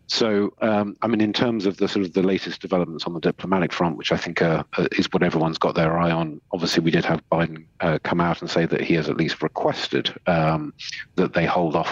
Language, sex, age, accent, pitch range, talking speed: English, male, 40-59, British, 80-90 Hz, 245 wpm